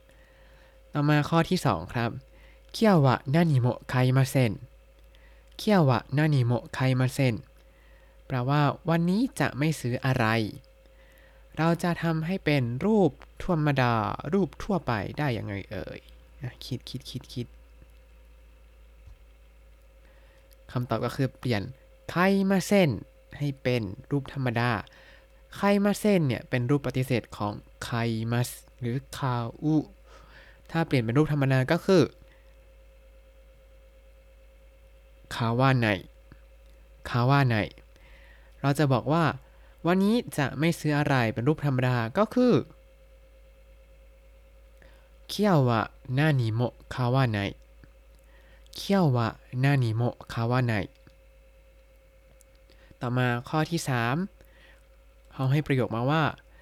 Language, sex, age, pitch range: Thai, male, 20-39, 115-155 Hz